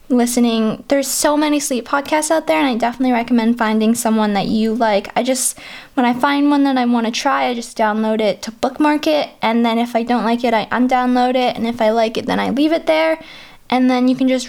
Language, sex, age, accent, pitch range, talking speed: English, female, 10-29, American, 225-270 Hz, 250 wpm